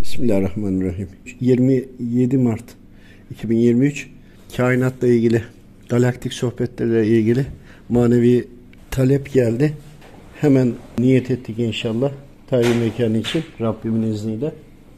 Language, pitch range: Turkish, 110-130 Hz